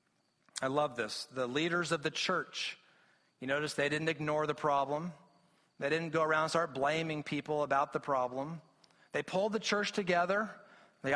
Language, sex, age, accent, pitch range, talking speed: English, male, 30-49, American, 170-210 Hz, 170 wpm